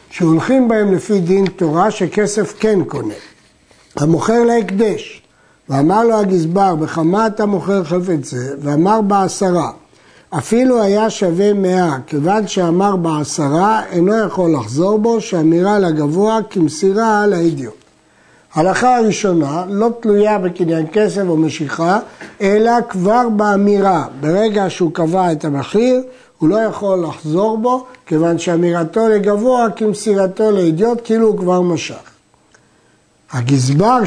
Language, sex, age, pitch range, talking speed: Hebrew, male, 60-79, 165-220 Hz, 120 wpm